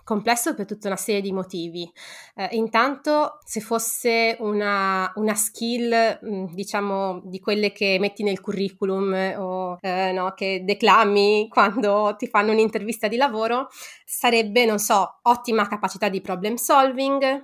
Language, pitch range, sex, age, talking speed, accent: Italian, 190-230 Hz, female, 20-39, 140 wpm, native